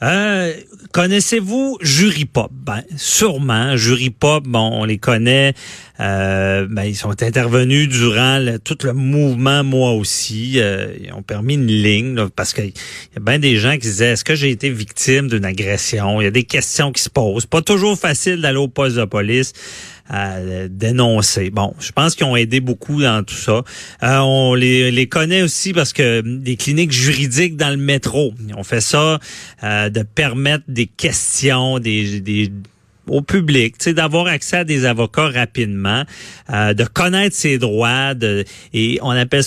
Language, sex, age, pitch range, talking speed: French, male, 40-59, 110-150 Hz, 180 wpm